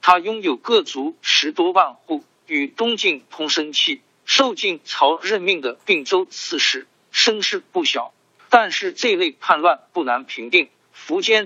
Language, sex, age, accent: Chinese, male, 50-69, native